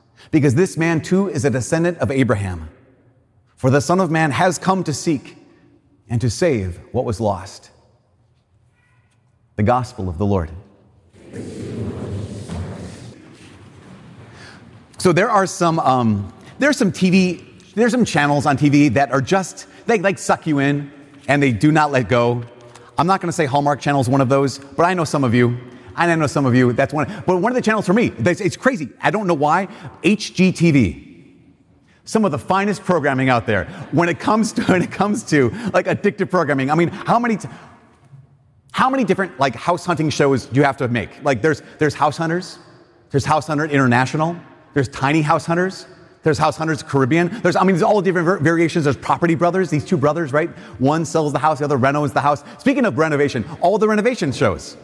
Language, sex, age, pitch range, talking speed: English, male, 30-49, 125-175 Hz, 195 wpm